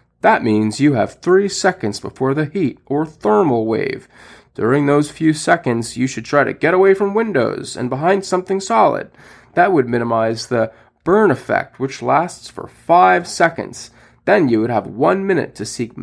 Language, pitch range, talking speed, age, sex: English, 110-150 Hz, 175 wpm, 30-49, male